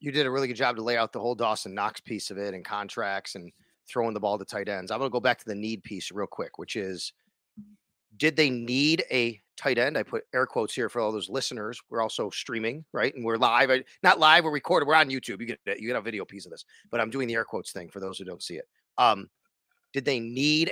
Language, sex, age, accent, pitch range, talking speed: English, male, 30-49, American, 115-170 Hz, 270 wpm